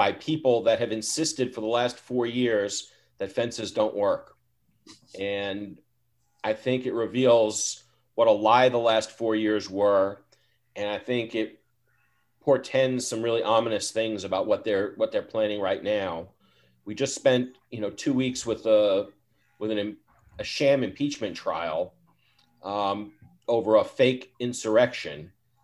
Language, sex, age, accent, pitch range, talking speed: English, male, 40-59, American, 105-125 Hz, 150 wpm